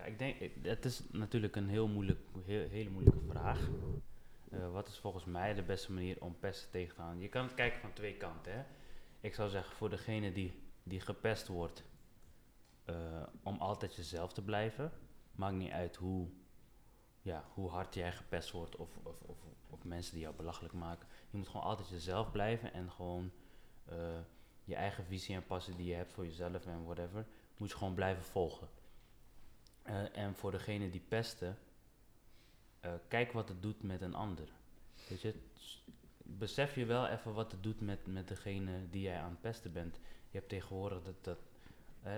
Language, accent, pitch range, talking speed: Dutch, Dutch, 90-110 Hz, 180 wpm